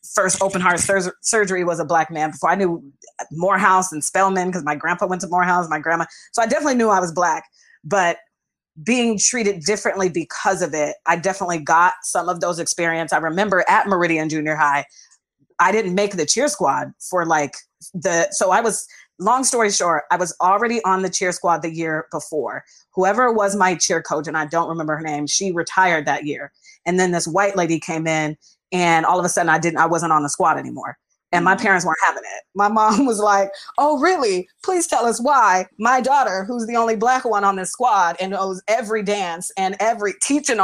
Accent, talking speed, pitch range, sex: American, 210 wpm, 165-210 Hz, female